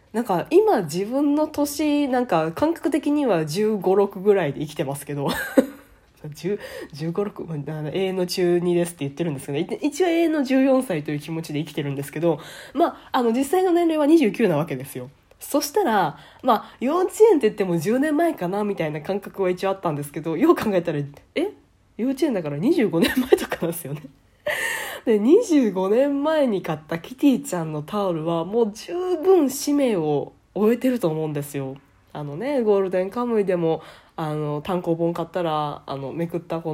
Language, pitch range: Japanese, 160-265 Hz